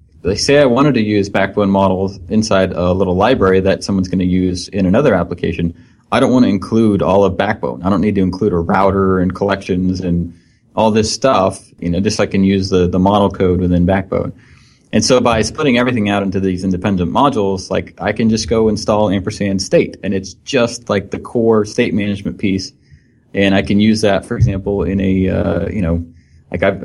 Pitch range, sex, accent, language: 95-110 Hz, male, American, English